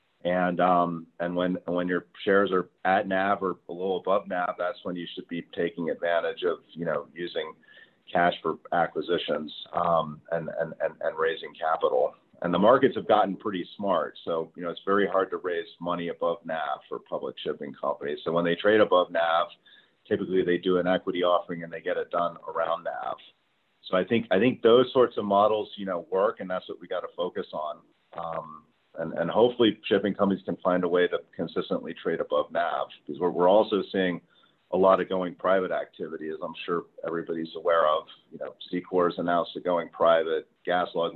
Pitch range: 85-115 Hz